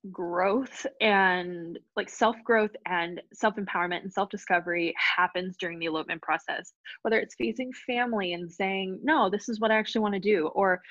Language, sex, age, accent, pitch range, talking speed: English, female, 20-39, American, 180-225 Hz, 160 wpm